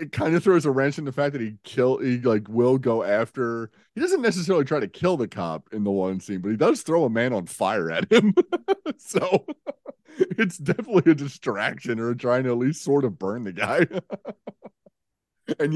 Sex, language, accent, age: male, English, American, 30-49